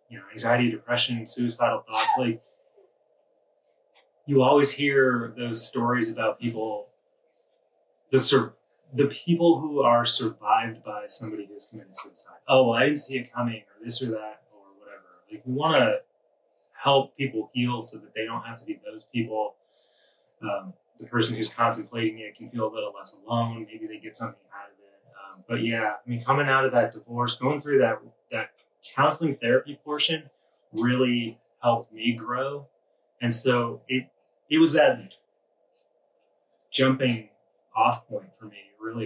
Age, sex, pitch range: 30-49, male, 115-145 Hz